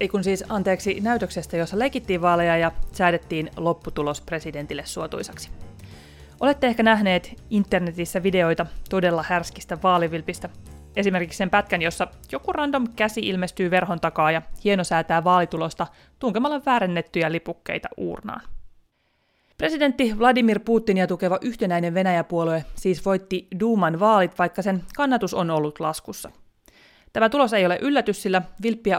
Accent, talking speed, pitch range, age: native, 125 wpm, 165-215 Hz, 30-49